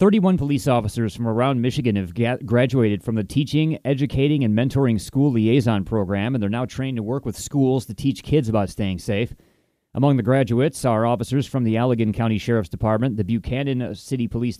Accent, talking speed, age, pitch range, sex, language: American, 190 wpm, 30-49, 110-130 Hz, male, English